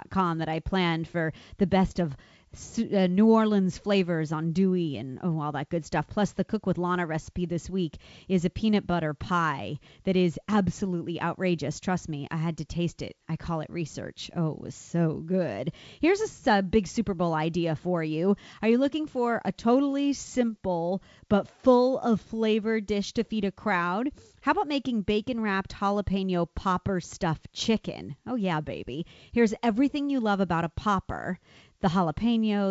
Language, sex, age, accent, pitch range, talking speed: English, female, 30-49, American, 170-220 Hz, 170 wpm